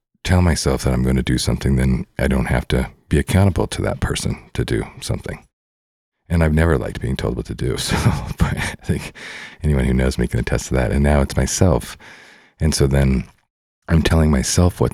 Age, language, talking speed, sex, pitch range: 40-59, English, 205 wpm, male, 65-75 Hz